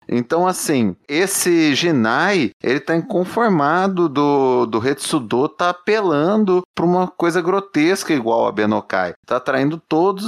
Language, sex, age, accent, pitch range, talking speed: Portuguese, male, 30-49, Brazilian, 125-170 Hz, 130 wpm